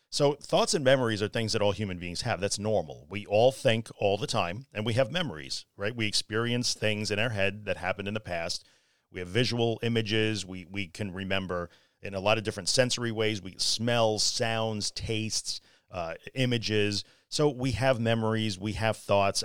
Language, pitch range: English, 100-125 Hz